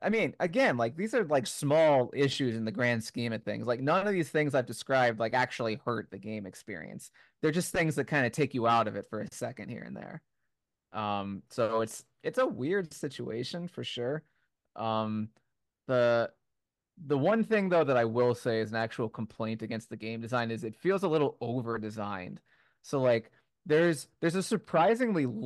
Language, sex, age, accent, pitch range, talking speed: English, male, 20-39, American, 115-160 Hz, 200 wpm